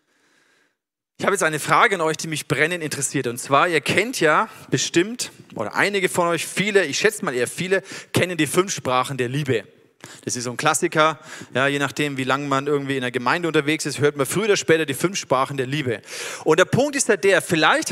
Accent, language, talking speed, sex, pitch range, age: German, German, 225 wpm, male, 145-195 Hz, 40-59